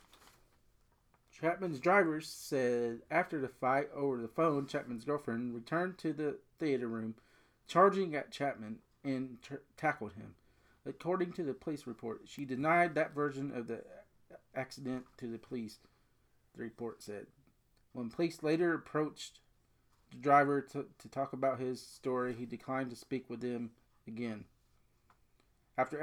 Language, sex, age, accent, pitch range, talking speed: English, male, 30-49, American, 115-145 Hz, 140 wpm